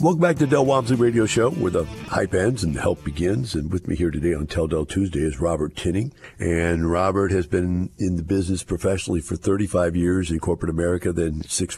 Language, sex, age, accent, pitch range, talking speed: English, male, 50-69, American, 80-95 Hz, 220 wpm